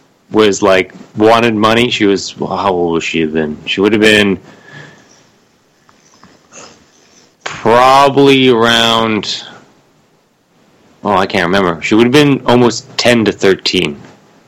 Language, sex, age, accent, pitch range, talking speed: English, male, 30-49, American, 90-115 Hz, 120 wpm